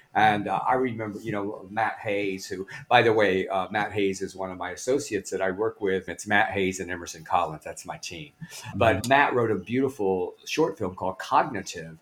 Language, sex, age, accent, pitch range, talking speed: English, male, 50-69, American, 95-130 Hz, 210 wpm